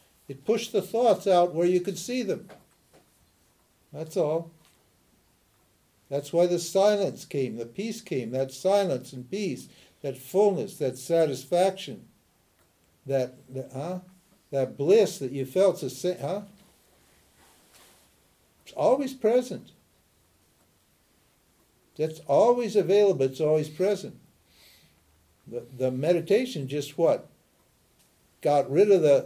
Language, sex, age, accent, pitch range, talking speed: English, male, 60-79, American, 130-185 Hz, 115 wpm